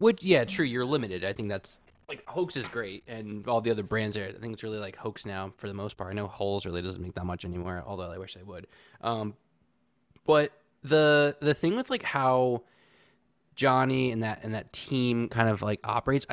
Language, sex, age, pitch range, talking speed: English, male, 20-39, 105-130 Hz, 225 wpm